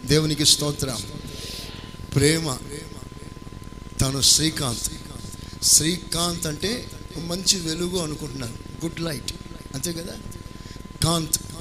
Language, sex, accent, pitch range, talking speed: Telugu, male, native, 130-170 Hz, 95 wpm